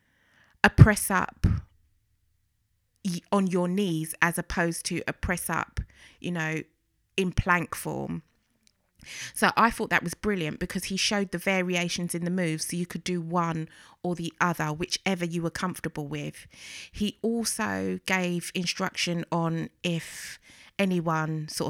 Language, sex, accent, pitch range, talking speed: English, female, British, 160-190 Hz, 145 wpm